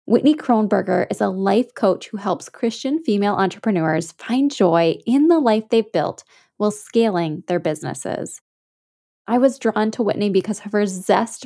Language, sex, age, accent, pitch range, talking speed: English, female, 10-29, American, 190-235 Hz, 160 wpm